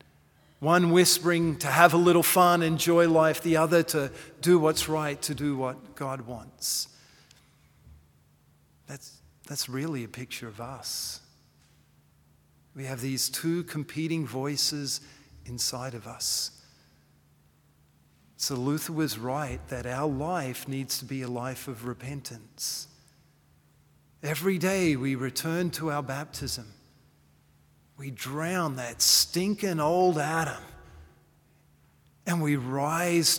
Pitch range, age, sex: 125-165 Hz, 40-59, male